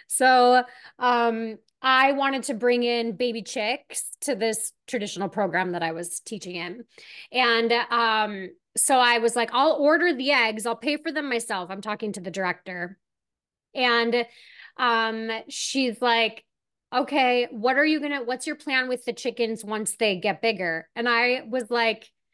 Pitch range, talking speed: 215-275 Hz, 165 wpm